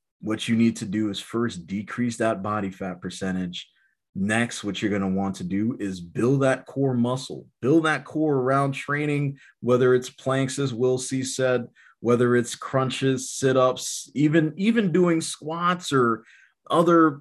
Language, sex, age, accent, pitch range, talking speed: English, male, 30-49, American, 100-130 Hz, 165 wpm